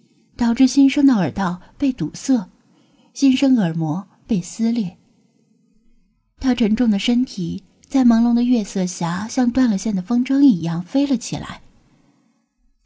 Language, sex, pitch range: Chinese, female, 190-250 Hz